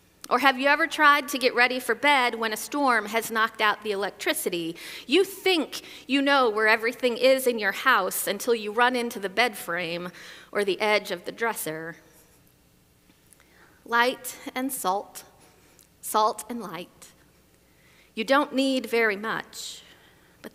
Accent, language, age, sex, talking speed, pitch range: American, English, 40-59, female, 155 wpm, 205-270 Hz